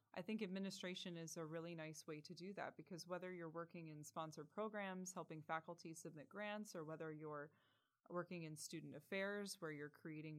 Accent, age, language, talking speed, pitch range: American, 20-39, English, 185 wpm, 155-190 Hz